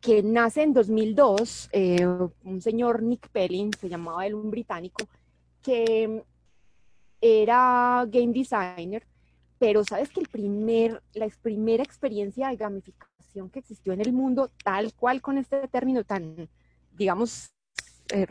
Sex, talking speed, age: female, 135 wpm, 20-39